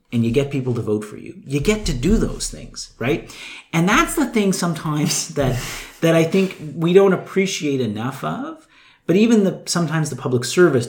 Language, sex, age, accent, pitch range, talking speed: English, male, 40-59, American, 110-160 Hz, 200 wpm